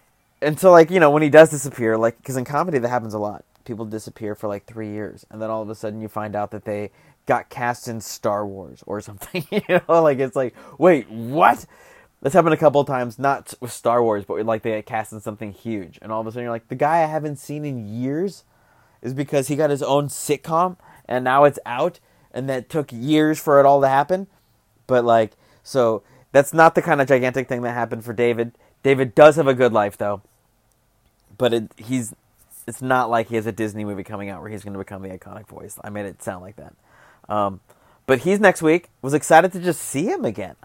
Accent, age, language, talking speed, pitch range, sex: American, 20-39, English, 235 wpm, 110-140 Hz, male